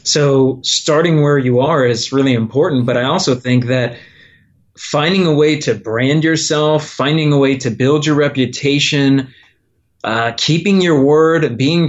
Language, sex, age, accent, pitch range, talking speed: English, male, 30-49, American, 130-160 Hz, 155 wpm